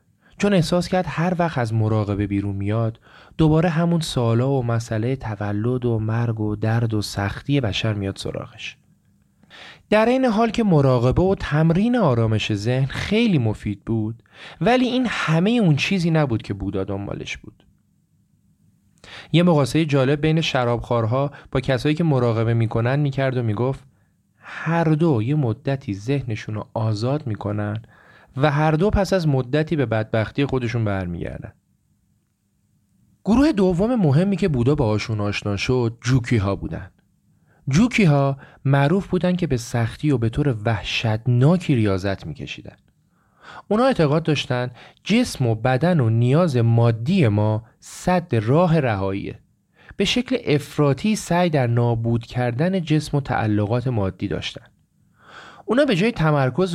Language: Persian